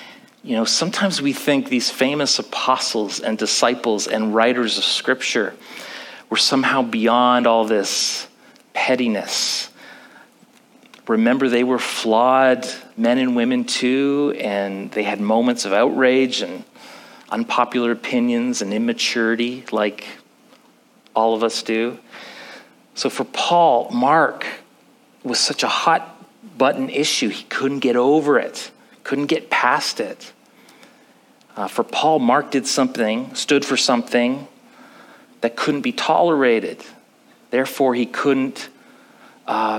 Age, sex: 40-59, male